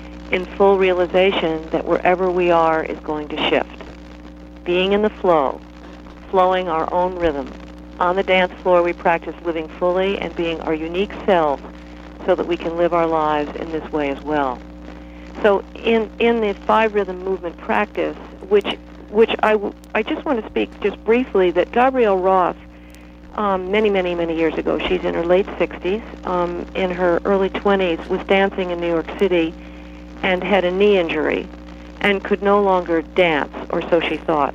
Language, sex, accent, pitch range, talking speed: English, female, American, 155-190 Hz, 175 wpm